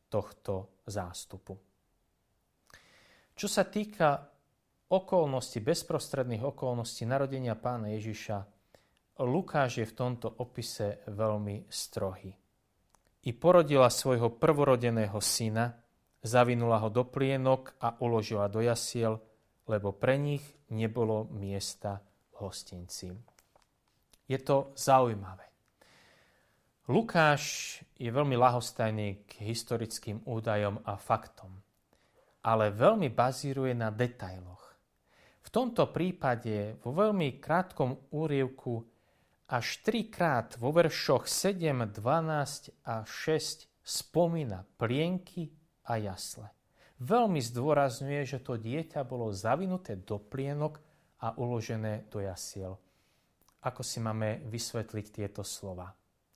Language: Slovak